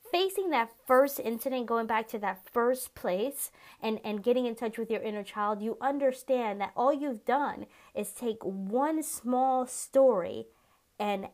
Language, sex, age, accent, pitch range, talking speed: English, female, 30-49, American, 200-255 Hz, 165 wpm